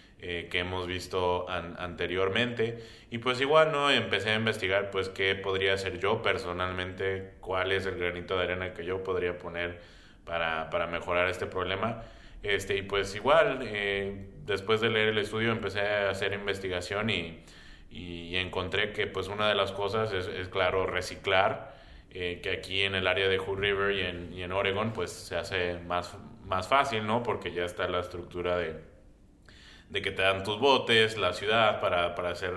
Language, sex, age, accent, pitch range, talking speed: English, male, 20-39, Mexican, 90-105 Hz, 180 wpm